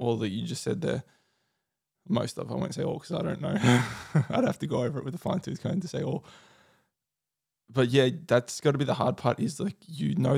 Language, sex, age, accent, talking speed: English, male, 20-39, Australian, 250 wpm